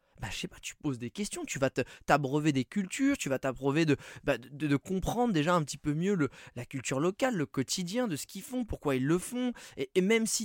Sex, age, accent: male, 20-39, French